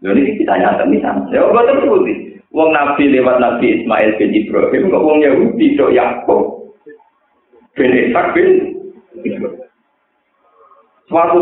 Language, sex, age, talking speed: Indonesian, male, 50-69, 105 wpm